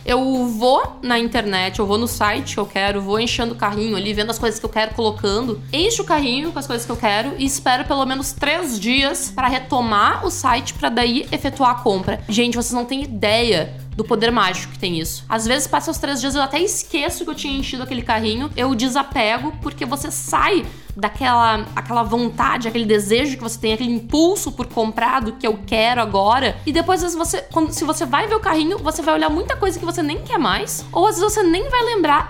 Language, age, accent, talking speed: Portuguese, 10-29, Brazilian, 230 wpm